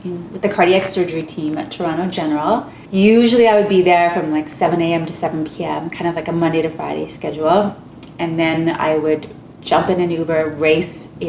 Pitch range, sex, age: 155-170 Hz, female, 30-49